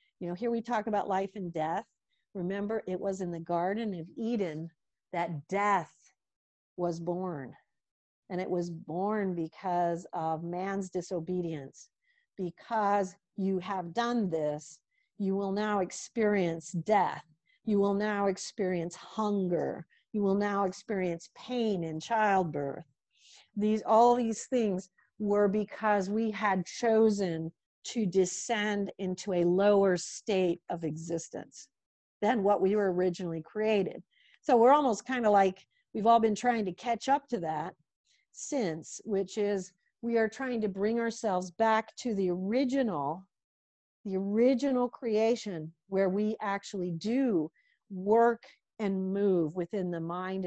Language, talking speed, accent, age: English, 135 wpm, American, 50-69